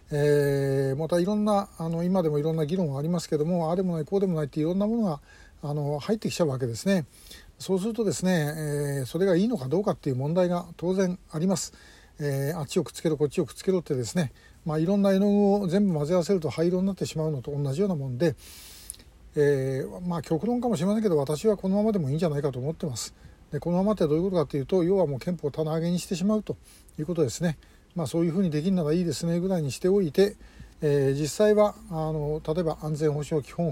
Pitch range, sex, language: 150-190 Hz, male, Japanese